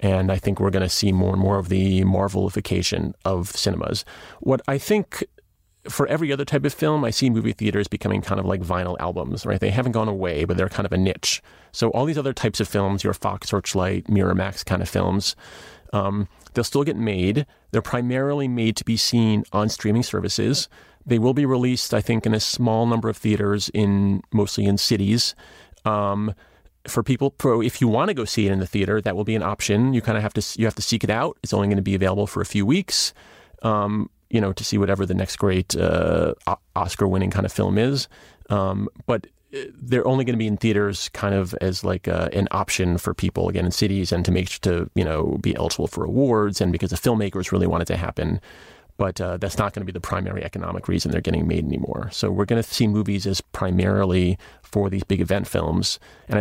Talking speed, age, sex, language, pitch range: 230 wpm, 30-49, male, English, 95-115 Hz